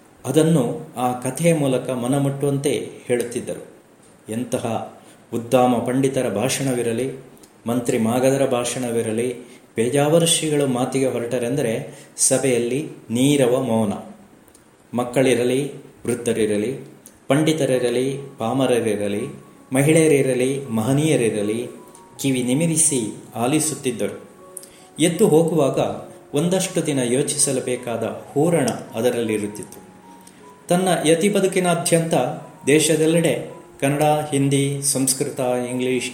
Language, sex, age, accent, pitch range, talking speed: Kannada, male, 30-49, native, 120-145 Hz, 70 wpm